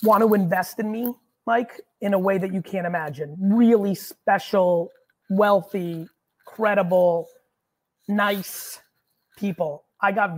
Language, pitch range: English, 175-205 Hz